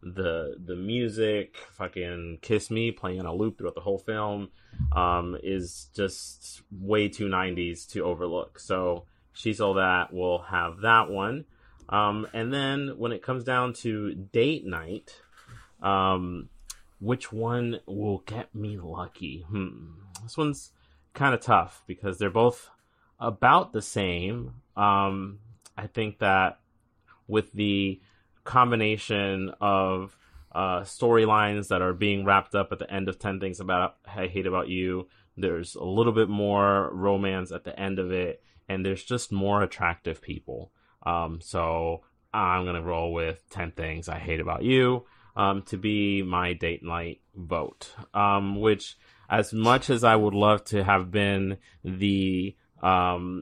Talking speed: 150 wpm